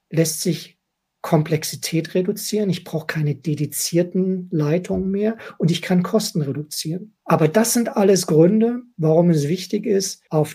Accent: German